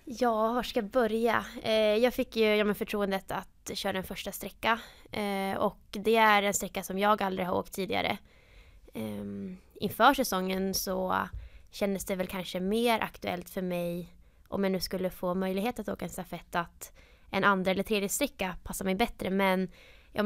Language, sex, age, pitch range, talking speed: Swedish, female, 20-39, 190-215 Hz, 180 wpm